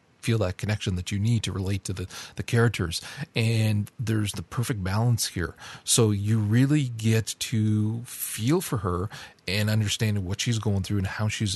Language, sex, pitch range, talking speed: English, male, 95-115 Hz, 180 wpm